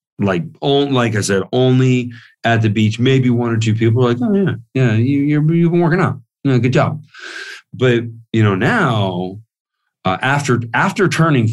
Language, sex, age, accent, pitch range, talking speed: English, male, 40-59, American, 95-130 Hz, 190 wpm